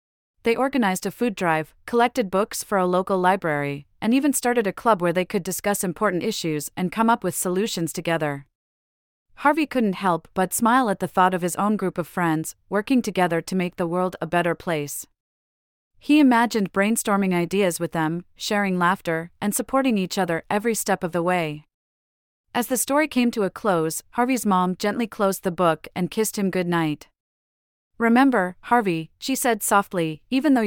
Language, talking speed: English, 180 wpm